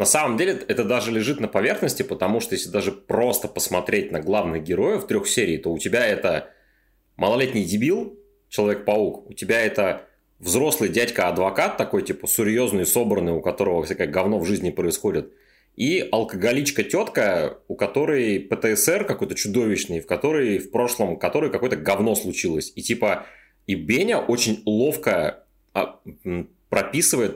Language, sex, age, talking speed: Russian, male, 30-49, 145 wpm